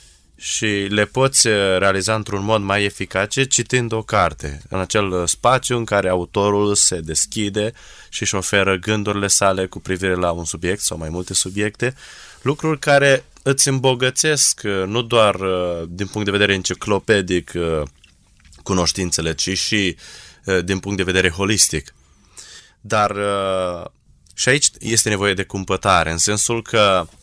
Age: 20-39